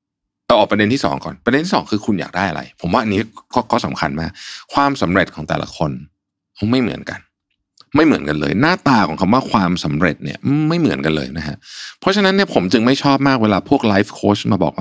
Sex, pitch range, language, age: male, 85-130 Hz, Thai, 60-79